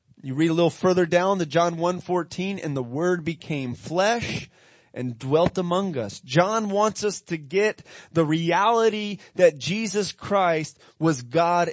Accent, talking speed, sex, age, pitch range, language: American, 160 wpm, male, 30-49, 140-185 Hz, English